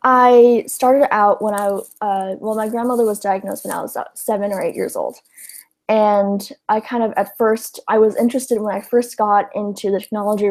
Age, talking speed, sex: 10-29, 200 wpm, female